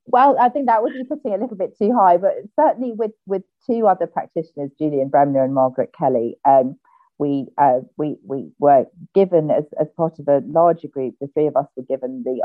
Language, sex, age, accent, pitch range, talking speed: English, female, 40-59, British, 130-170 Hz, 215 wpm